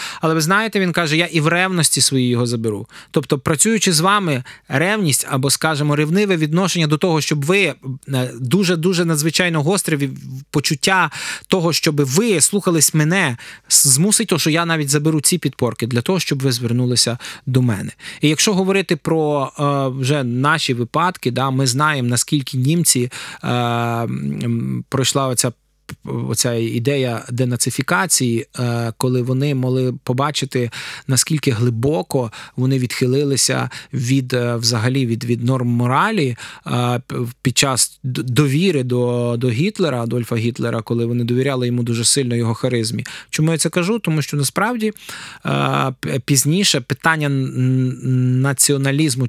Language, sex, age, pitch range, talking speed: Ukrainian, male, 20-39, 120-155 Hz, 130 wpm